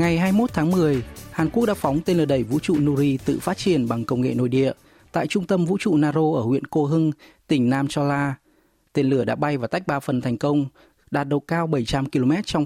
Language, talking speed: Vietnamese, 240 wpm